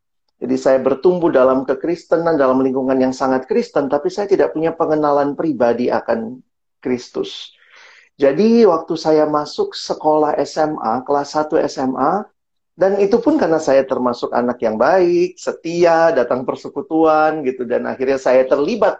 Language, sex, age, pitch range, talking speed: Indonesian, male, 40-59, 125-185 Hz, 140 wpm